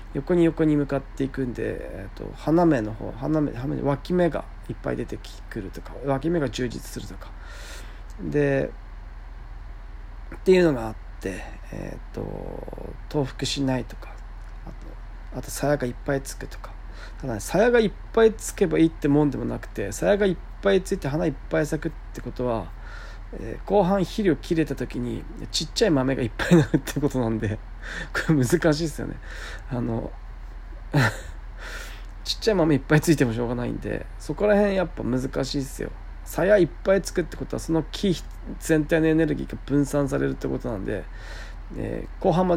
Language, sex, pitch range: Japanese, male, 115-165 Hz